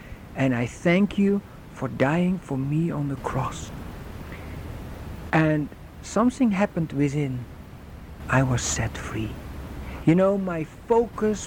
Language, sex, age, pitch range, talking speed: English, male, 60-79, 130-185 Hz, 120 wpm